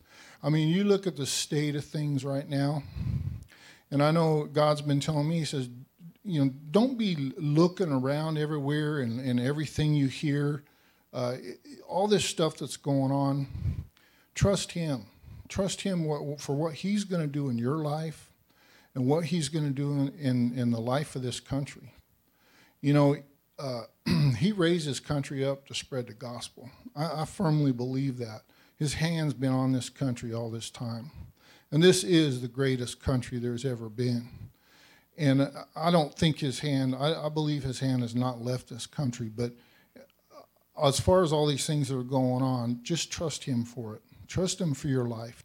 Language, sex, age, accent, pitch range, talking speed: English, male, 50-69, American, 125-155 Hz, 180 wpm